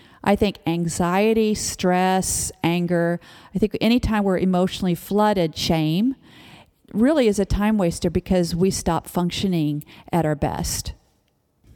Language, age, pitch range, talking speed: English, 40-59, 175-215 Hz, 125 wpm